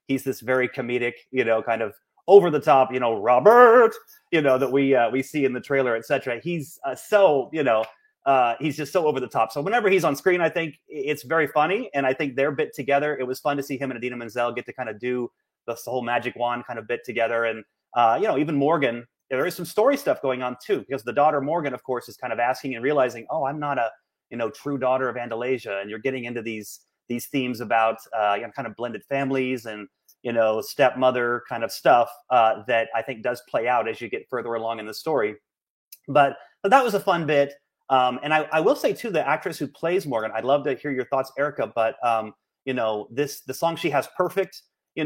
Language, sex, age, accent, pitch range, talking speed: English, male, 30-49, American, 115-145 Hz, 245 wpm